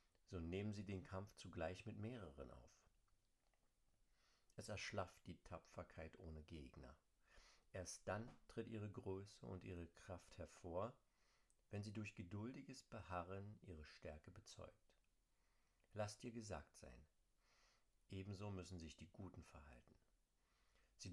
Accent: German